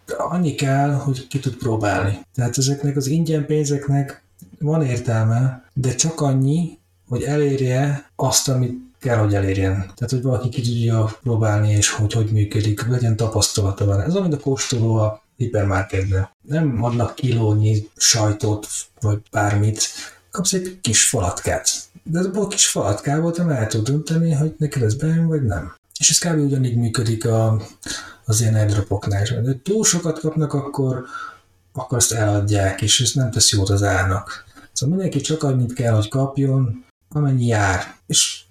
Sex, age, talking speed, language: male, 30-49, 155 wpm, Hungarian